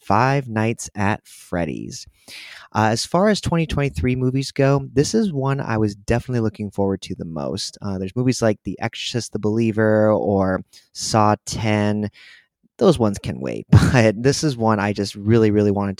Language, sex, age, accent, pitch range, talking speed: English, male, 30-49, American, 105-140 Hz, 175 wpm